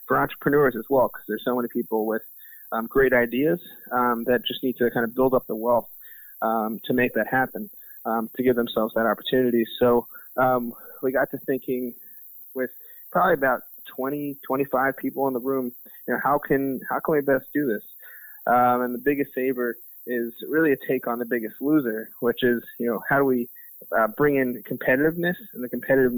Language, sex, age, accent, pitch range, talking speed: English, male, 20-39, American, 120-135 Hz, 195 wpm